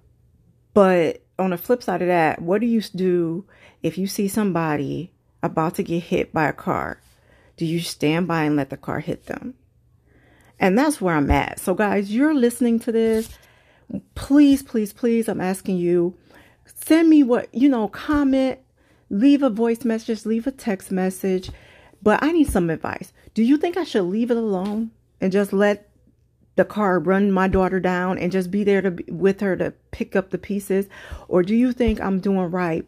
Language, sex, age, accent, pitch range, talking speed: English, female, 40-59, American, 180-225 Hz, 190 wpm